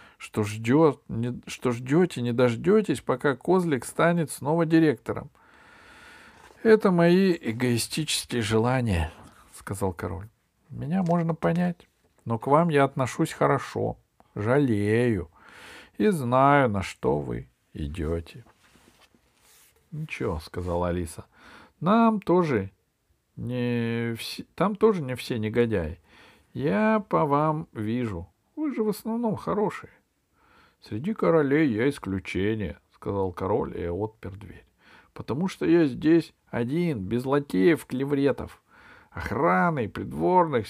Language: Russian